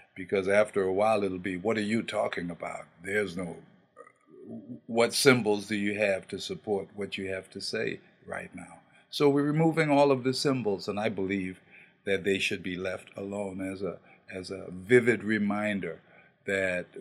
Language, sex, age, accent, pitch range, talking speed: English, male, 50-69, American, 95-125 Hz, 175 wpm